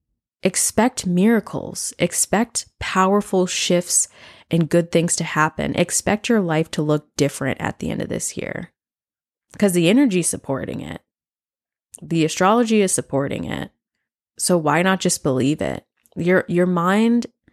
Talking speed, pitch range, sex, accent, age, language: 145 wpm, 155-185 Hz, female, American, 10-29, English